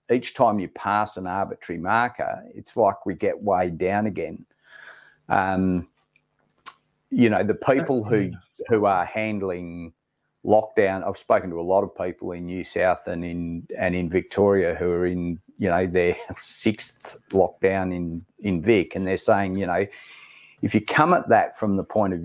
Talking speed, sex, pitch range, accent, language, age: 175 wpm, male, 90-100 Hz, Australian, English, 40-59